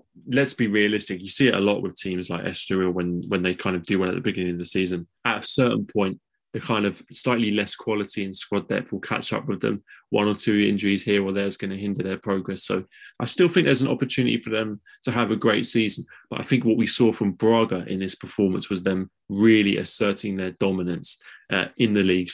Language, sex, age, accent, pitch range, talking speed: English, male, 20-39, British, 95-110 Hz, 240 wpm